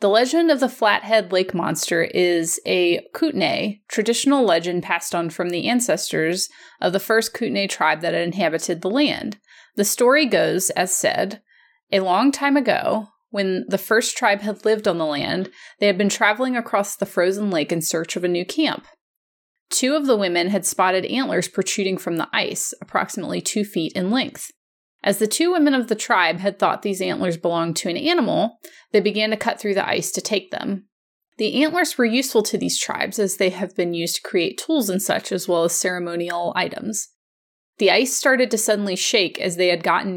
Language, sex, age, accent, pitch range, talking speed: English, female, 30-49, American, 180-235 Hz, 195 wpm